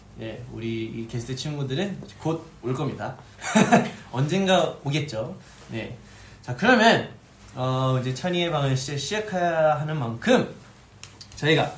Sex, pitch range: male, 115-185 Hz